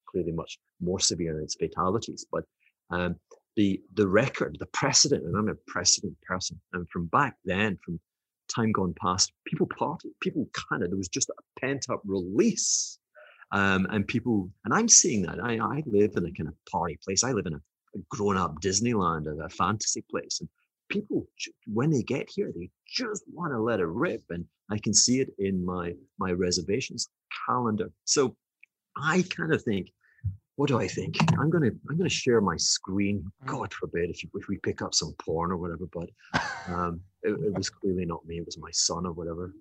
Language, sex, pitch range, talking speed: English, male, 90-105 Hz, 195 wpm